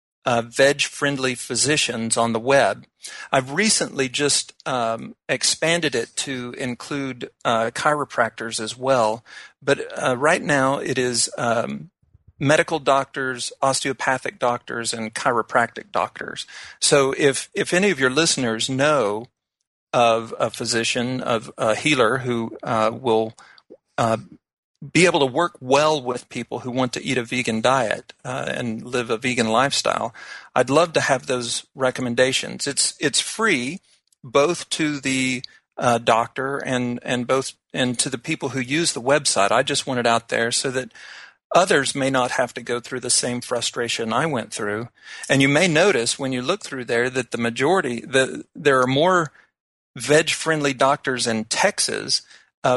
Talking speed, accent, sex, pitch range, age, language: 160 wpm, American, male, 120-140 Hz, 50-69, English